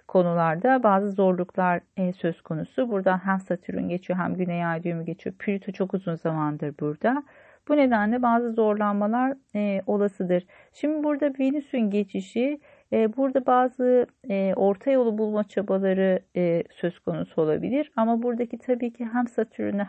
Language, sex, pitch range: Turkish, female, 185-240 Hz